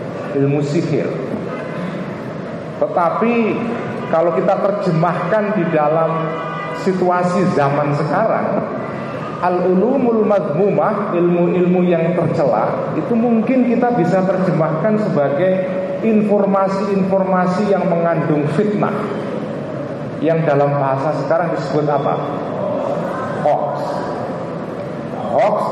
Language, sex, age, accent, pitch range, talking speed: Indonesian, male, 40-59, native, 155-200 Hz, 80 wpm